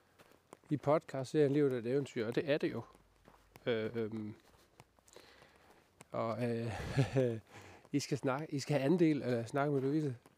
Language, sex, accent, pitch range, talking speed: Danish, male, native, 120-150 Hz, 175 wpm